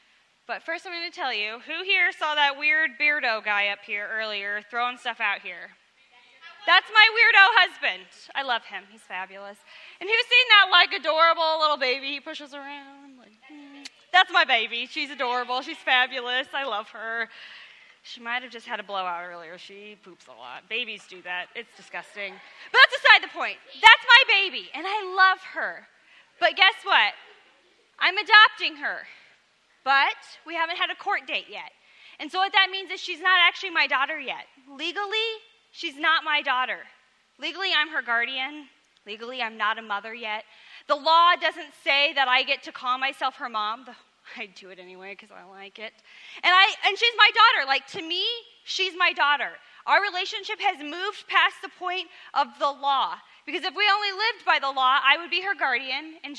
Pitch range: 235-365 Hz